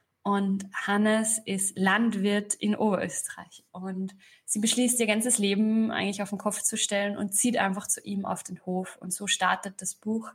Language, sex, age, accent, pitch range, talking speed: German, female, 20-39, German, 200-225 Hz, 180 wpm